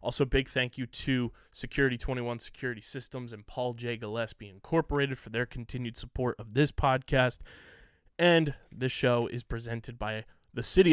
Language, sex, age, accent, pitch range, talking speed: English, male, 20-39, American, 120-140 Hz, 160 wpm